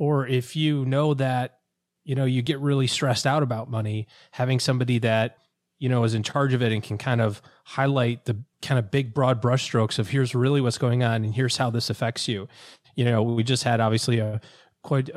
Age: 30-49